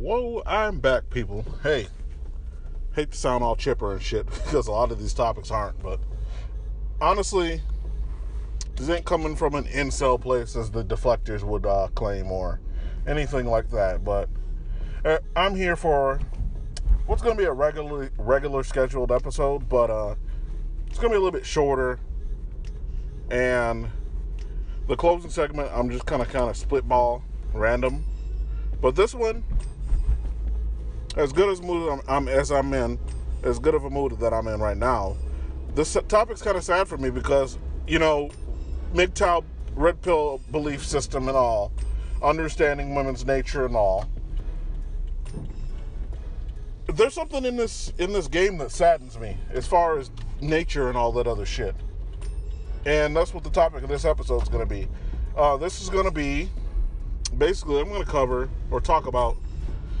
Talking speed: 160 wpm